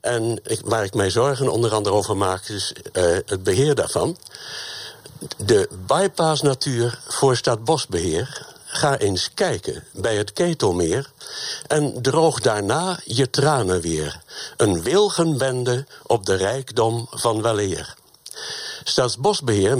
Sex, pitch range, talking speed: male, 110-160 Hz, 115 wpm